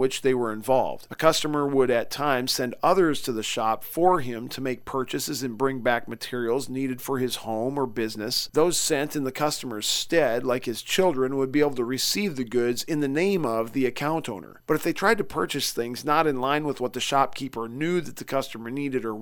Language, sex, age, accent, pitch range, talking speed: English, male, 40-59, American, 125-150 Hz, 225 wpm